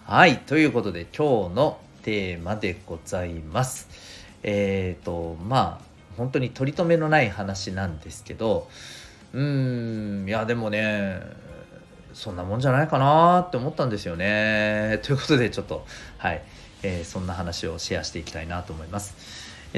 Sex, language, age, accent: male, Japanese, 40-59, native